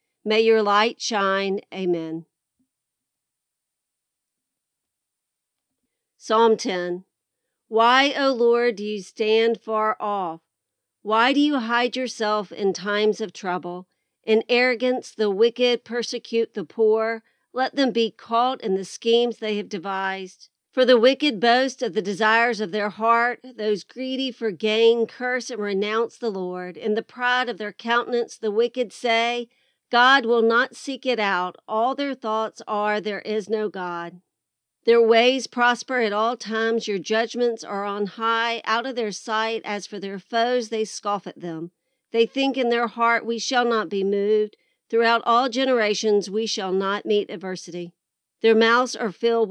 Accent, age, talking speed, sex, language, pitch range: American, 50-69, 155 wpm, female, English, 205-240 Hz